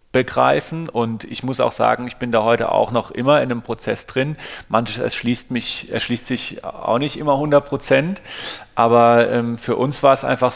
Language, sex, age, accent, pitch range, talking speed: German, male, 40-59, German, 115-135 Hz, 175 wpm